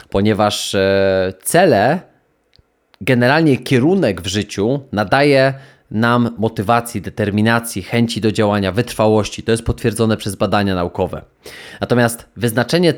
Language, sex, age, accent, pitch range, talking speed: Polish, male, 20-39, native, 110-135 Hz, 100 wpm